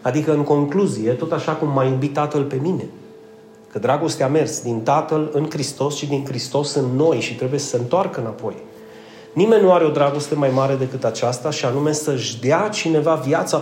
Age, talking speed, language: 30-49, 200 wpm, Romanian